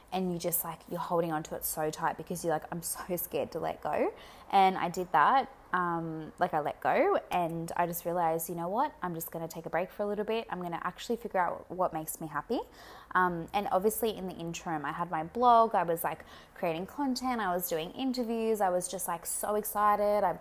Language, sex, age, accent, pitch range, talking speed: English, female, 20-39, Australian, 165-210 Hz, 240 wpm